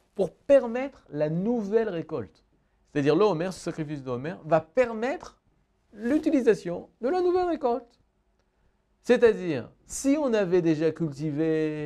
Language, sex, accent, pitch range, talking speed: French, male, French, 125-195 Hz, 120 wpm